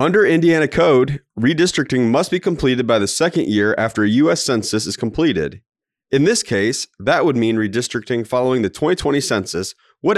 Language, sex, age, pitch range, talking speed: English, male, 30-49, 100-135 Hz, 170 wpm